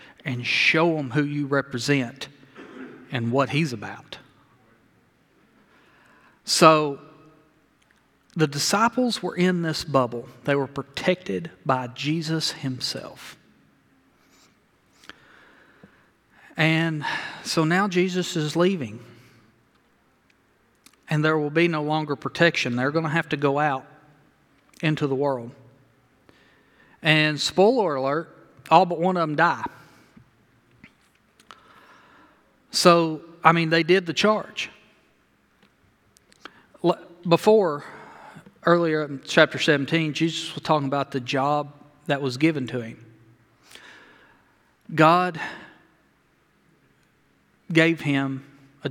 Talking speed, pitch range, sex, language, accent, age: 100 wpm, 135-170 Hz, male, English, American, 40-59